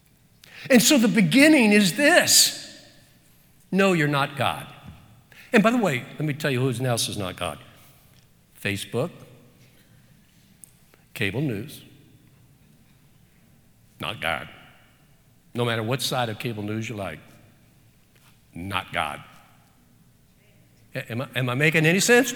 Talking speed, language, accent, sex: 125 wpm, English, American, male